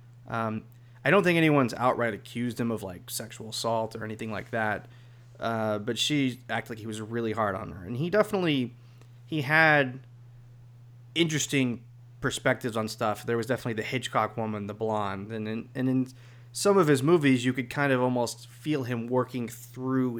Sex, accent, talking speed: male, American, 180 wpm